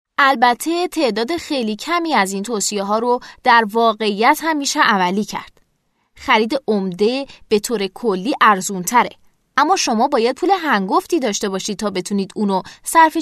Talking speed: 145 wpm